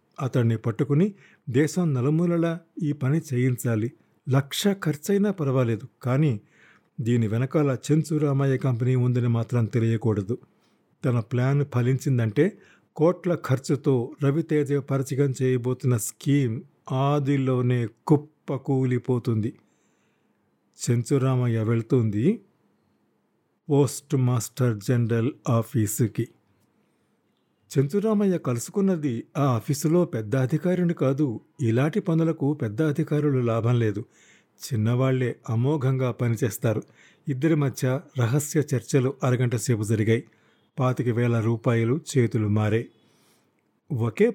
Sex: male